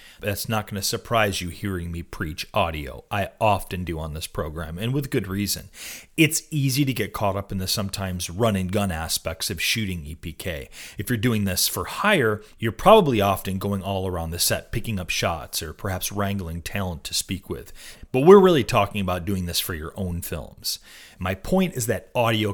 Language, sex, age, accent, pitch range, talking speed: English, male, 30-49, American, 90-120 Hz, 195 wpm